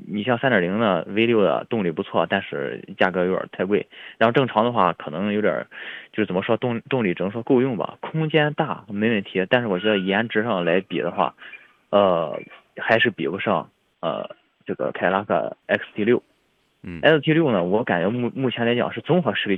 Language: Chinese